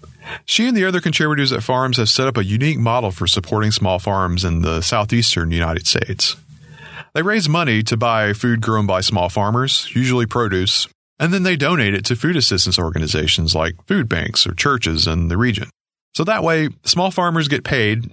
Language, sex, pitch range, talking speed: English, male, 95-135 Hz, 190 wpm